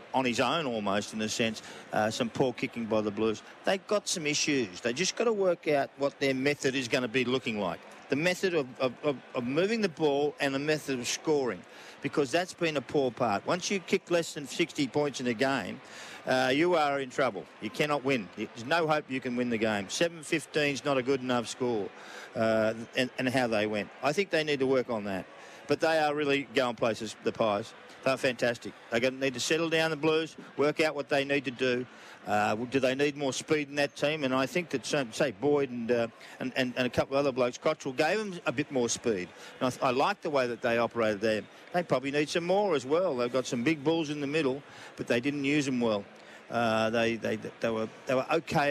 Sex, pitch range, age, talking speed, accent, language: male, 120-150 Hz, 50-69, 245 wpm, Australian, English